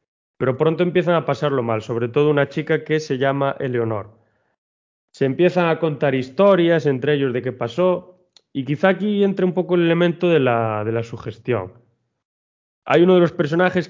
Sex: male